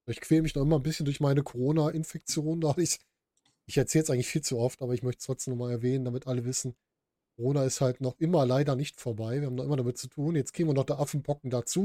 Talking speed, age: 260 wpm, 10-29